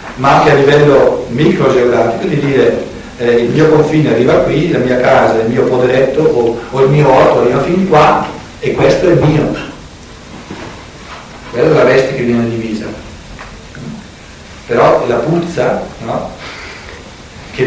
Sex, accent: male, native